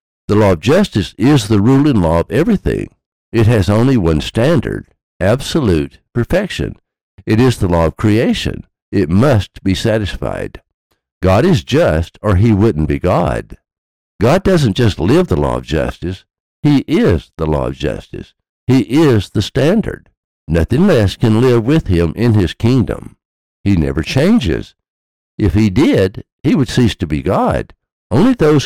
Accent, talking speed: American, 160 wpm